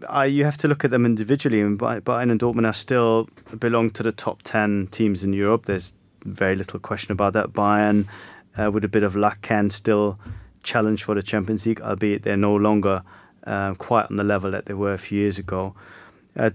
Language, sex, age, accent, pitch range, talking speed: English, male, 30-49, British, 100-115 Hz, 215 wpm